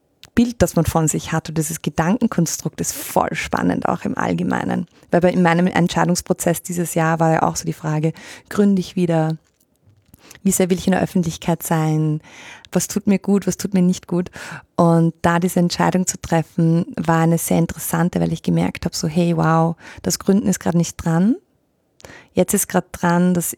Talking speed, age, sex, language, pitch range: 190 wpm, 30-49, female, German, 160-190 Hz